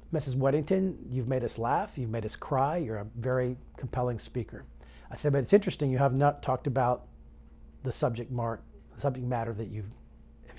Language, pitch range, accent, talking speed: English, 110-145 Hz, American, 180 wpm